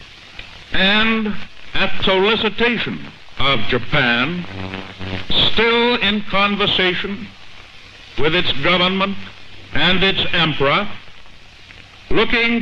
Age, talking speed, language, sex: 60-79, 70 wpm, English, male